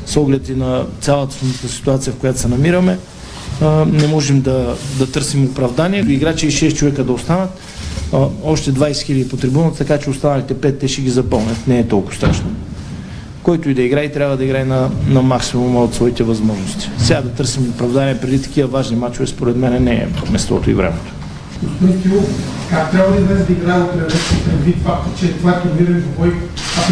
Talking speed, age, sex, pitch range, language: 180 wpm, 40-59, male, 130-175 Hz, Bulgarian